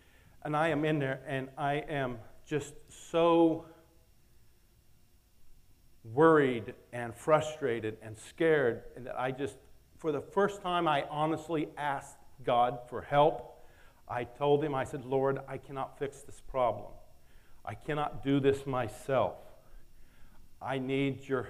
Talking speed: 130 wpm